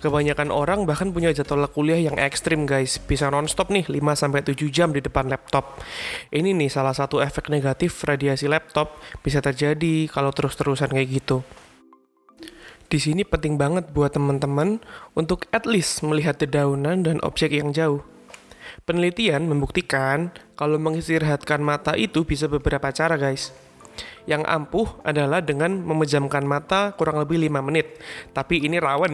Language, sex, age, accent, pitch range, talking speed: Indonesian, male, 20-39, native, 140-165 Hz, 145 wpm